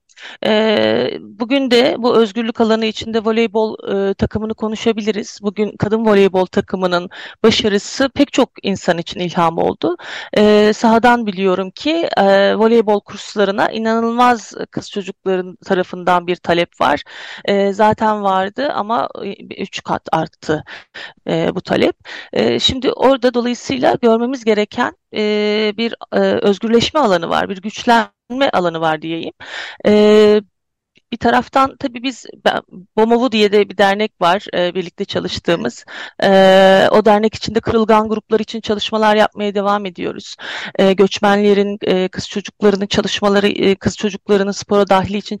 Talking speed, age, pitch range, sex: 115 wpm, 40-59, 200-235 Hz, female